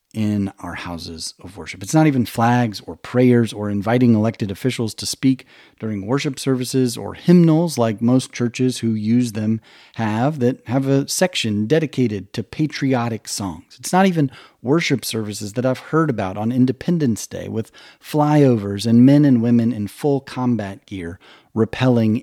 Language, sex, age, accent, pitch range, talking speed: English, male, 40-59, American, 105-130 Hz, 160 wpm